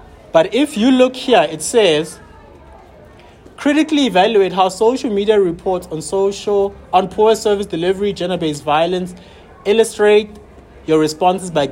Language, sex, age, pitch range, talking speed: English, male, 30-49, 135-195 Hz, 130 wpm